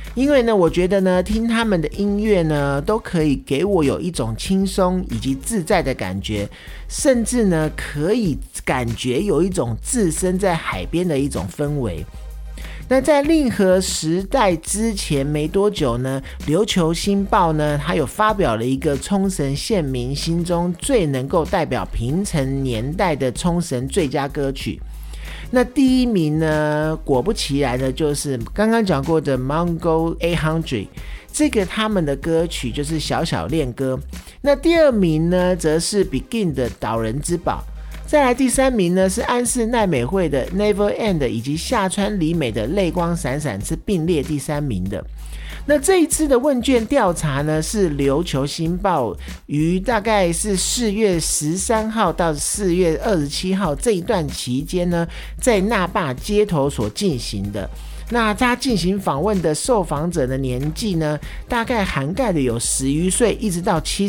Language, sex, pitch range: Chinese, male, 140-205 Hz